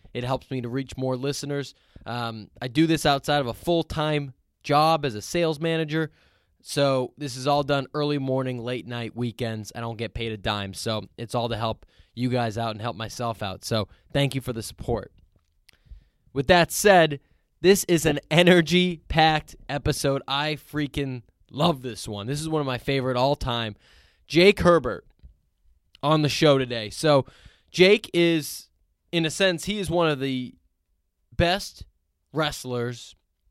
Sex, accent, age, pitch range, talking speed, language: male, American, 20-39, 115-165 Hz, 165 wpm, English